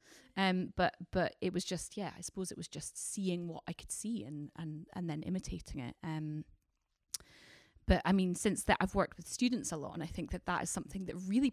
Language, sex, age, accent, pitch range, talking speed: English, female, 20-39, British, 170-190 Hz, 230 wpm